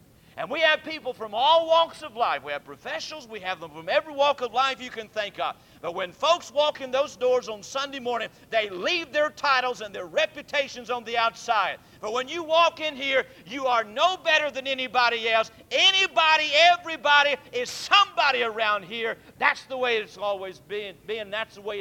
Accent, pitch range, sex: American, 215-300 Hz, male